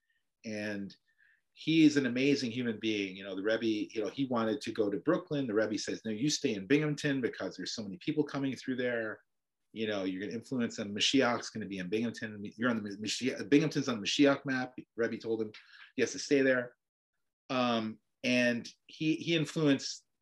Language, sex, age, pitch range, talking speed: English, male, 40-59, 110-145 Hz, 210 wpm